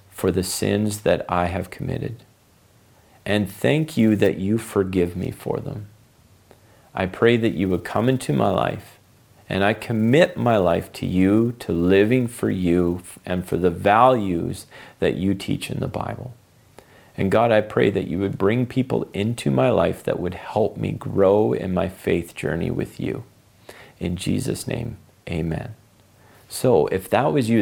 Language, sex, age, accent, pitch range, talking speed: English, male, 40-59, American, 95-115 Hz, 170 wpm